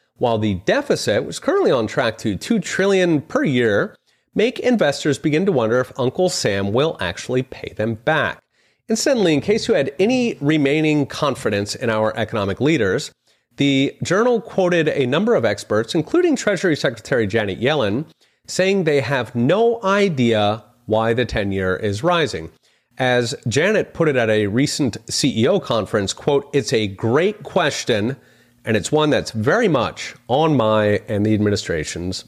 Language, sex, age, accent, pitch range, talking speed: English, male, 30-49, American, 110-175 Hz, 155 wpm